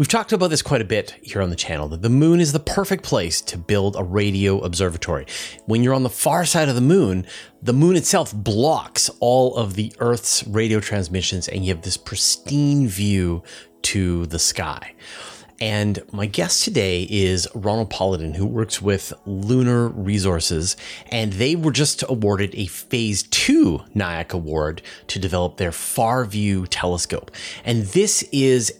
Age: 30-49